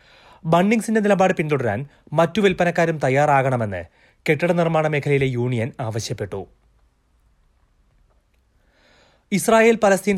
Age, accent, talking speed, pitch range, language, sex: 30-49, native, 75 wpm, 130-165 Hz, Malayalam, male